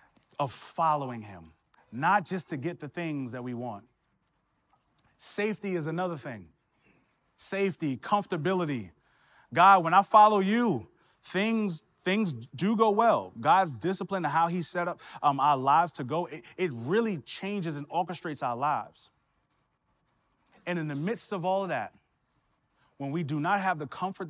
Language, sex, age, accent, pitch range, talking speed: English, male, 30-49, American, 135-180 Hz, 155 wpm